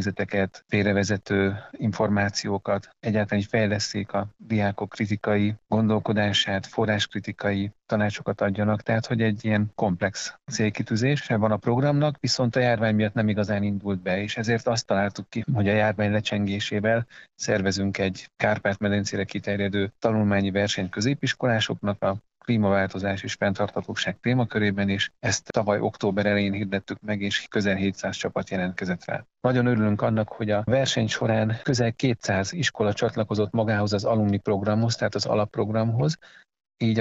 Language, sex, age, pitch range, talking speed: Hungarian, male, 40-59, 100-115 Hz, 135 wpm